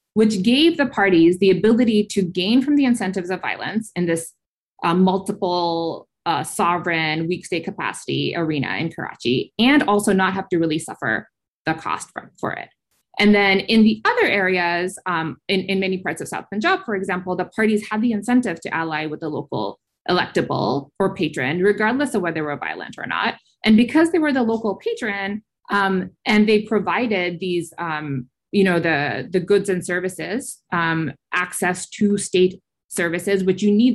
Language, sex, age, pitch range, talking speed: English, female, 20-39, 170-215 Hz, 180 wpm